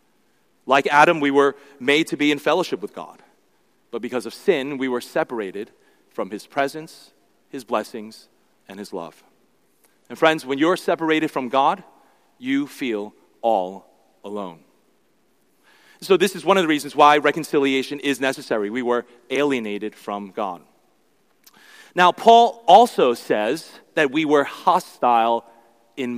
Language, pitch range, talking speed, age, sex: English, 130-195 Hz, 140 wpm, 40-59, male